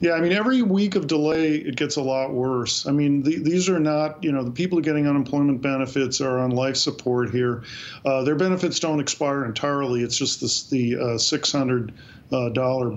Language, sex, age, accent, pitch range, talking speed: English, male, 50-69, American, 130-150 Hz, 185 wpm